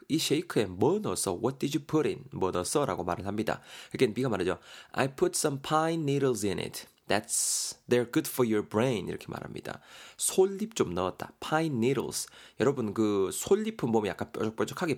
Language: Korean